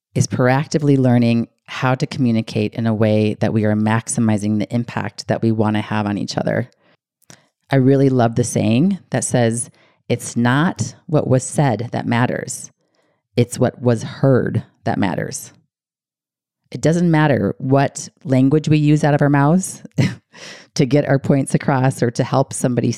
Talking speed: 160 wpm